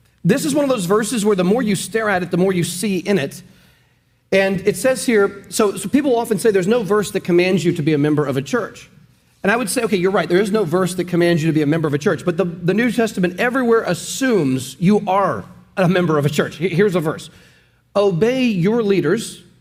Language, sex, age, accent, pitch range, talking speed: English, male, 40-59, American, 165-210 Hz, 250 wpm